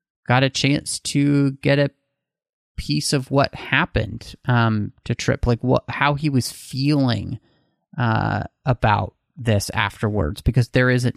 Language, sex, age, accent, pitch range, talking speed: English, male, 30-49, American, 110-135 Hz, 140 wpm